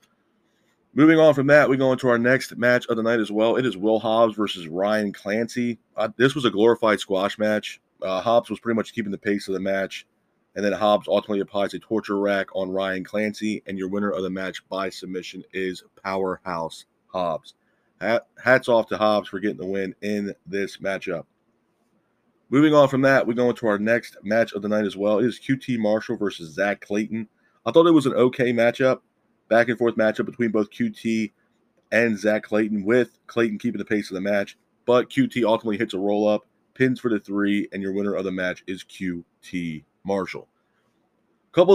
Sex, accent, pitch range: male, American, 100-115 Hz